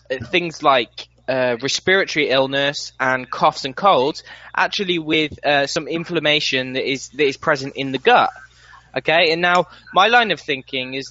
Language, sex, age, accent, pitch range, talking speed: English, male, 10-29, British, 135-165 Hz, 160 wpm